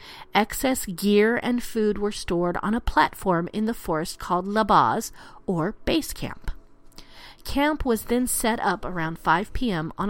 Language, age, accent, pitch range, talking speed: English, 40-59, American, 185-240 Hz, 155 wpm